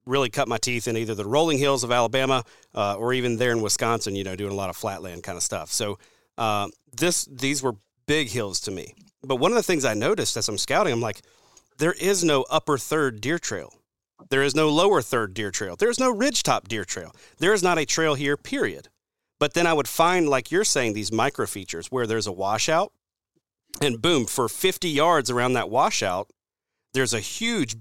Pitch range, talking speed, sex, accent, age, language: 110-145 Hz, 215 wpm, male, American, 40-59, English